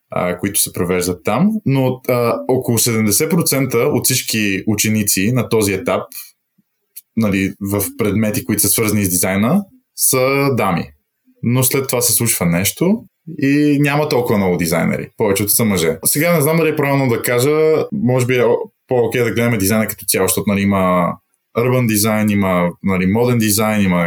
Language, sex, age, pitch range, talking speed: Bulgarian, male, 20-39, 105-150 Hz, 165 wpm